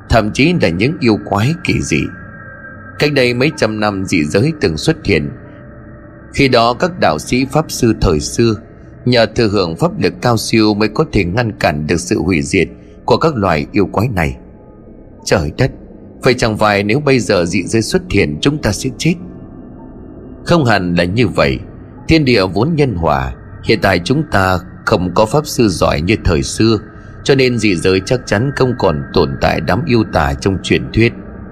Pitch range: 95-130 Hz